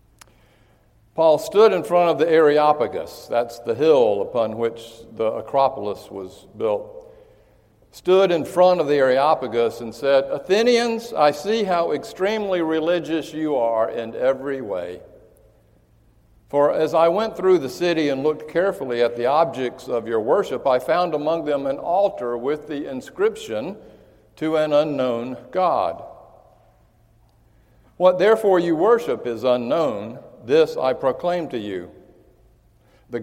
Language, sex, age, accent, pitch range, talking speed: English, male, 60-79, American, 115-195 Hz, 135 wpm